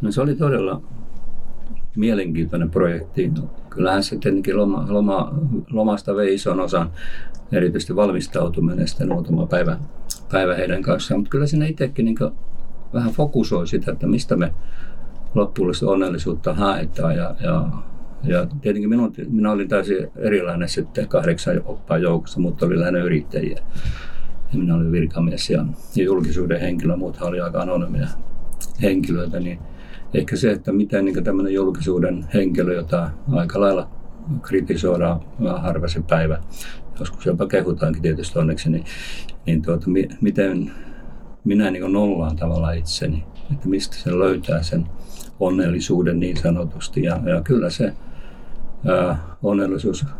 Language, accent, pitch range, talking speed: Finnish, native, 80-100 Hz, 125 wpm